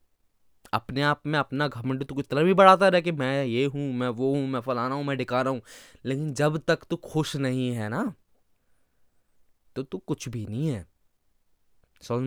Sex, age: male, 20-39